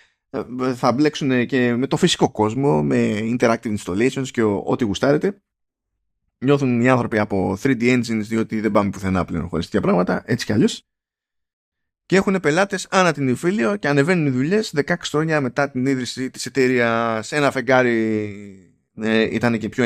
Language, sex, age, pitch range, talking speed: Greek, male, 20-39, 100-140 Hz, 155 wpm